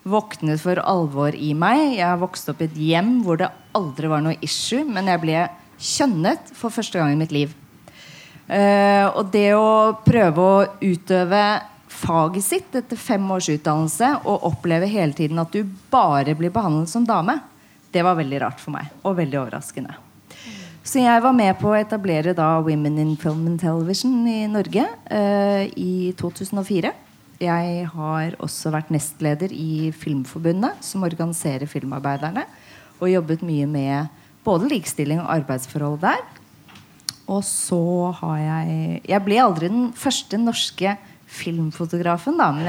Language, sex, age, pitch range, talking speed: English, female, 30-49, 155-205 Hz, 150 wpm